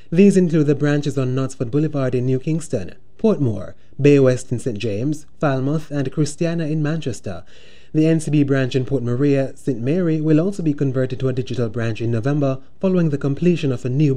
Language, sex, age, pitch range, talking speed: English, male, 20-39, 125-155 Hz, 190 wpm